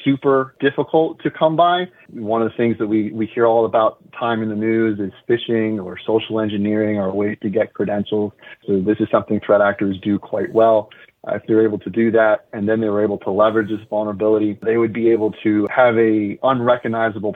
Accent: American